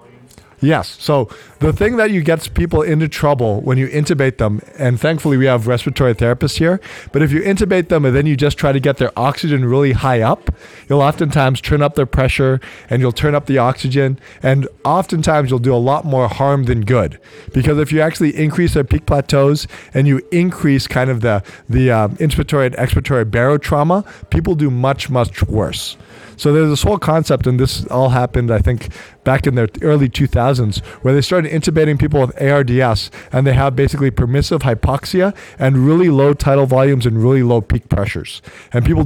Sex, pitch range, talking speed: male, 115-145 Hz, 195 wpm